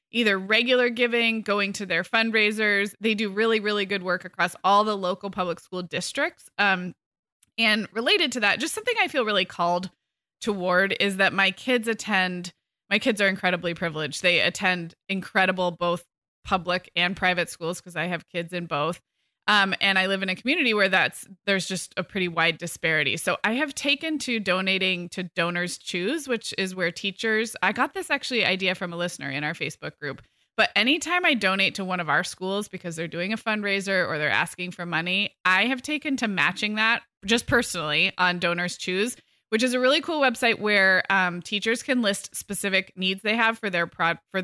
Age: 20-39